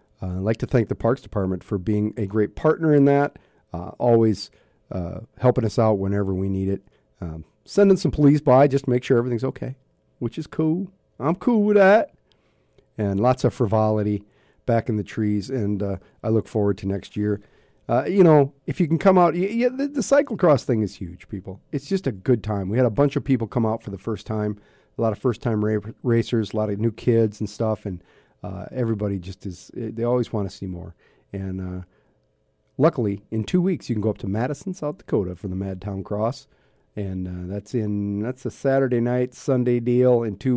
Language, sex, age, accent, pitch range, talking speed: English, male, 40-59, American, 105-135 Hz, 215 wpm